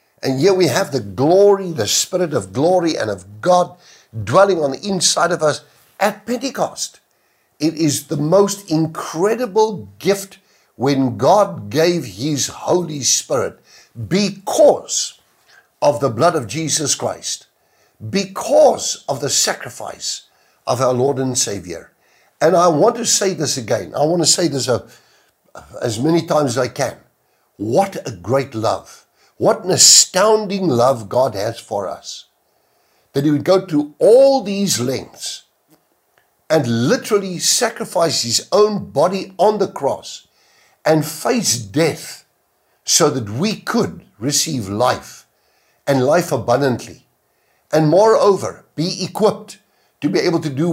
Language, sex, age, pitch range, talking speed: English, male, 60-79, 135-195 Hz, 140 wpm